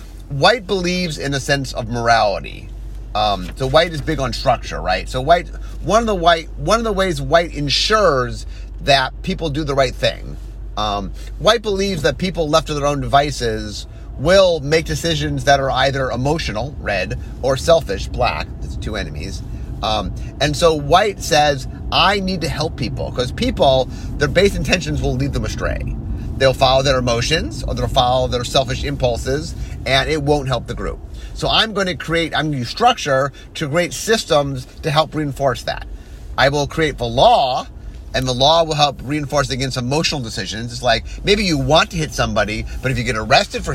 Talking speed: 190 wpm